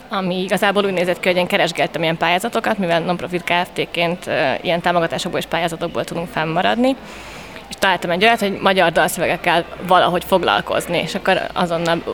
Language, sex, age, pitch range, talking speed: Hungarian, female, 20-39, 175-200 Hz, 155 wpm